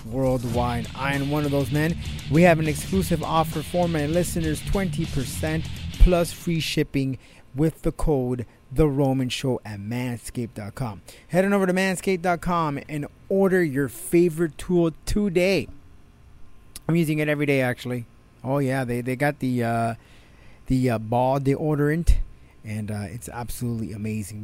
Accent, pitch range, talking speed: American, 120-170 Hz, 150 wpm